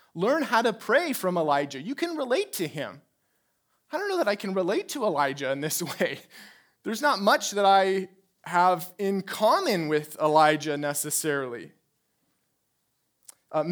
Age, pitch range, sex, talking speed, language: 30-49, 160-215 Hz, male, 155 wpm, English